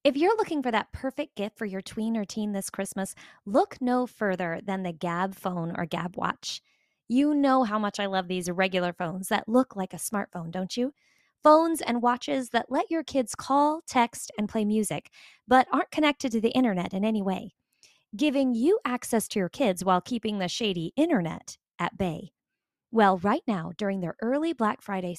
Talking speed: 195 wpm